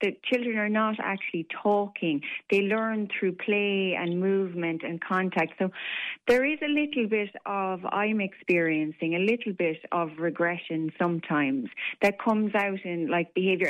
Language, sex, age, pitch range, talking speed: English, female, 30-49, 170-200 Hz, 155 wpm